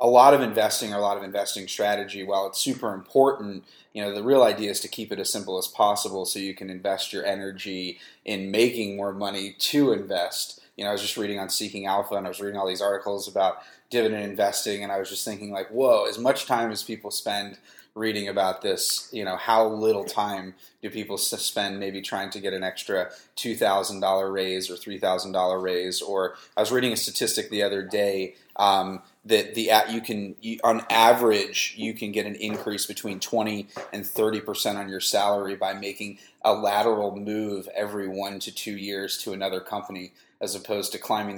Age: 20-39